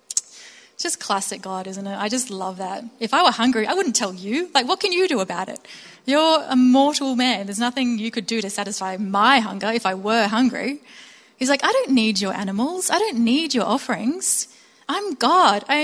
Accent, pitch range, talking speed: Australian, 205-260 Hz, 210 wpm